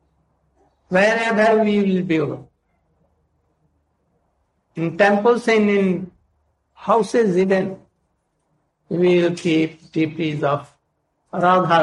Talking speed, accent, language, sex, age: 85 wpm, native, Hindi, male, 60-79